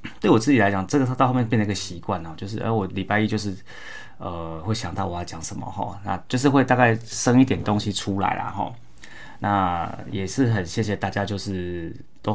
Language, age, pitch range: Chinese, 20-39, 95-110 Hz